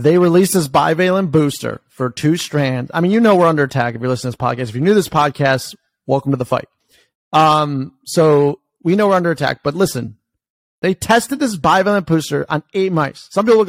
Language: English